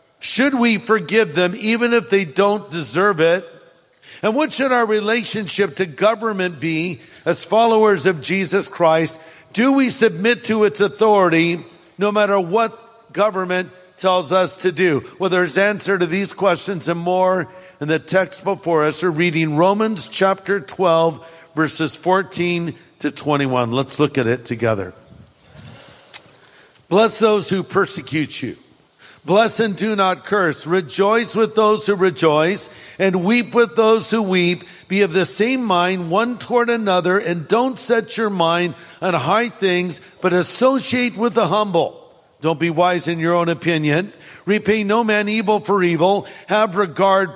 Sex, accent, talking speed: male, American, 155 wpm